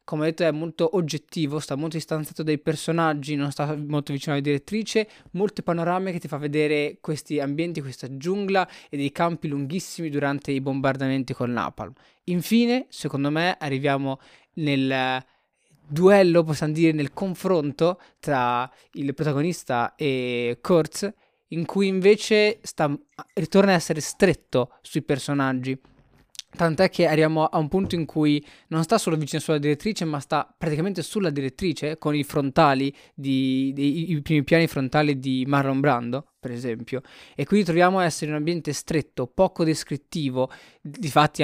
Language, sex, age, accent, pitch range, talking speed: Italian, male, 20-39, native, 140-170 Hz, 155 wpm